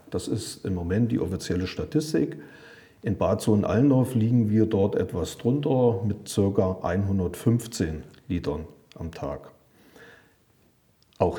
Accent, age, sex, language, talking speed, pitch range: German, 40-59, male, German, 115 wpm, 95-125 Hz